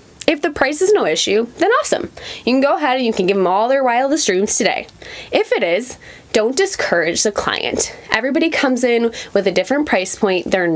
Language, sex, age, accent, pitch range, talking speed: English, female, 20-39, American, 200-275 Hz, 210 wpm